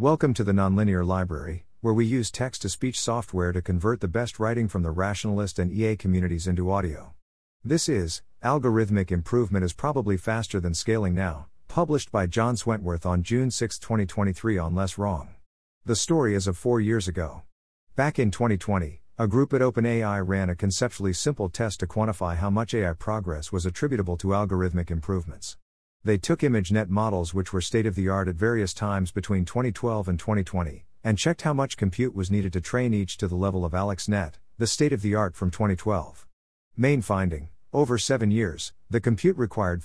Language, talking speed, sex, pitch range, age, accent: English, 180 wpm, male, 90-115 Hz, 50-69, American